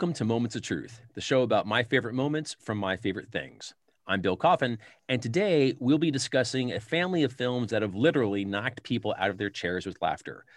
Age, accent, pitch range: 40-59, American, 100-135 Hz